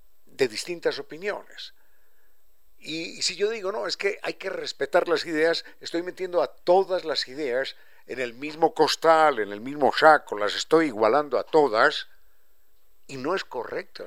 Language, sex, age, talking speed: Spanish, male, 60-79, 165 wpm